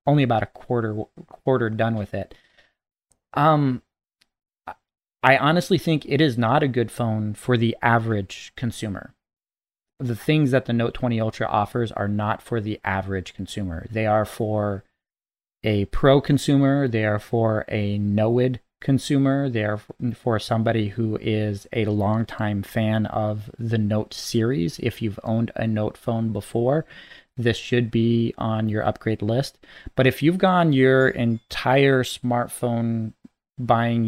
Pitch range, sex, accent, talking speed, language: 105-130 Hz, male, American, 150 wpm, English